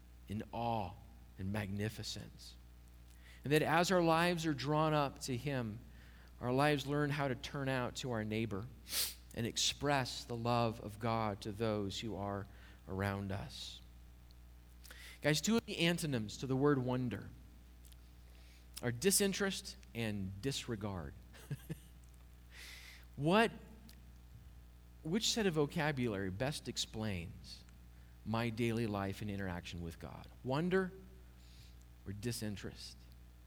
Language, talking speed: English, 120 wpm